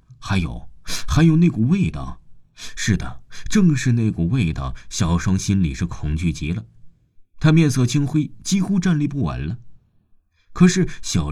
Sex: male